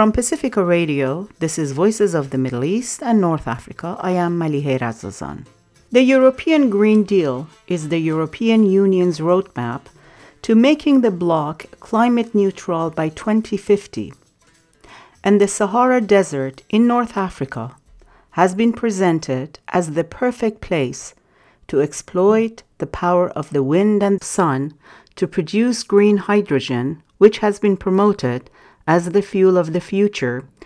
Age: 50-69